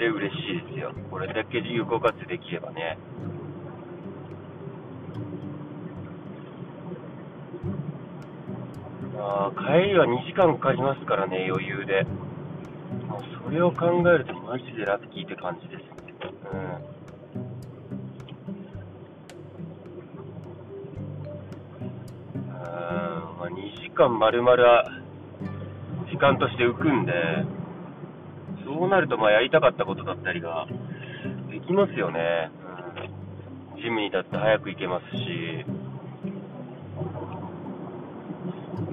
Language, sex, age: Japanese, male, 30-49